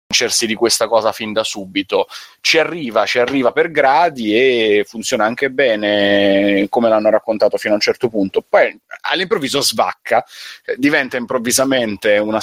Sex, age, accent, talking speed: male, 30-49, native, 145 wpm